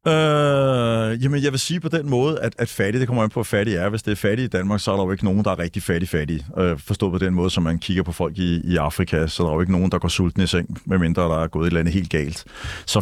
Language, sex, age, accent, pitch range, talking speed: Danish, male, 30-49, native, 95-130 Hz, 315 wpm